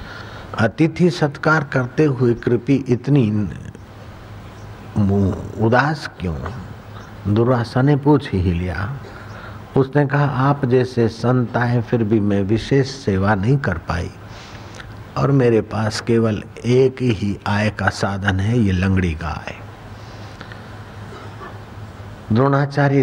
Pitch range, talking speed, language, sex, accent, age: 105-125 Hz, 100 wpm, Hindi, male, native, 60-79